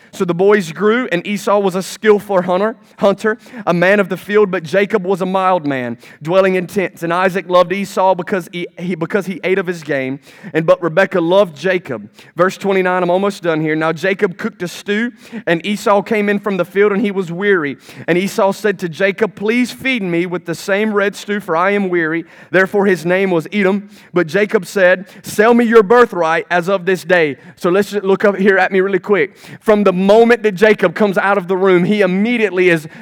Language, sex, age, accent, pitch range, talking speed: English, male, 30-49, American, 180-205 Hz, 220 wpm